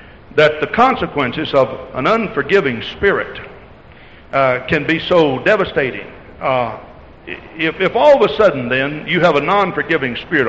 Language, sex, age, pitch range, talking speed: English, male, 60-79, 125-160 Hz, 145 wpm